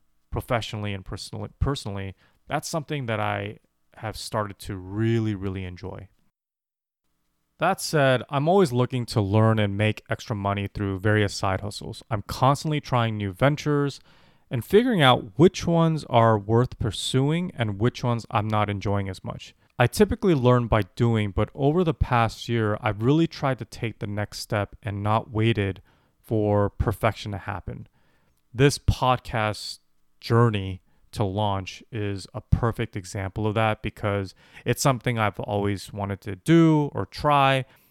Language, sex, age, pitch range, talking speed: English, male, 30-49, 100-125 Hz, 150 wpm